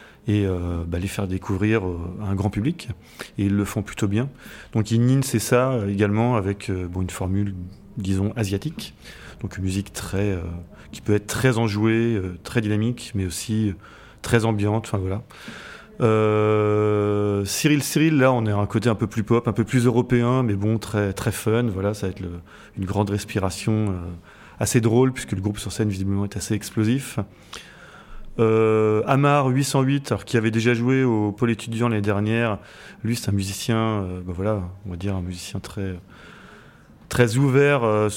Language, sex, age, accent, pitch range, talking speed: English, male, 30-49, French, 100-115 Hz, 185 wpm